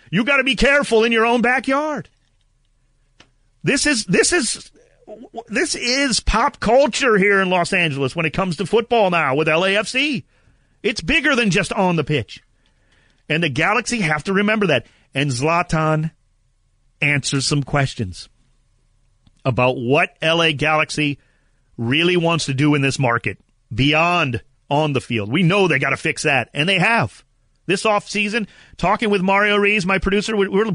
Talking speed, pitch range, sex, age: 160 wpm, 130-200 Hz, male, 40-59